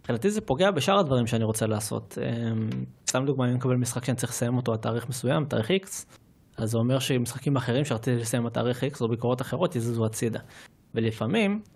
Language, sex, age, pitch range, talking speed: Hebrew, male, 20-39, 115-140 Hz, 200 wpm